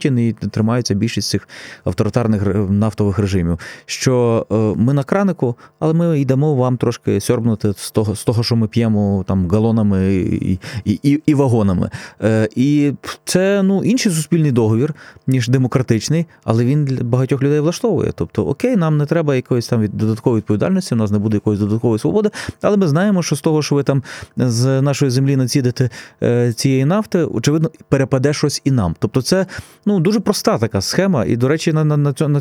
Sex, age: male, 20-39